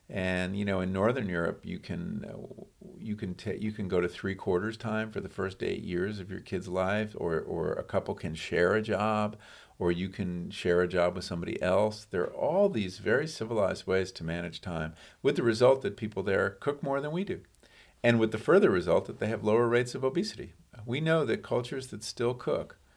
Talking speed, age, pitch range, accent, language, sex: 220 wpm, 50-69, 95-140 Hz, American, English, male